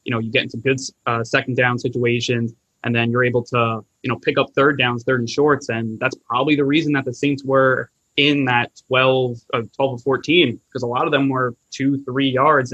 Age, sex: 20-39, male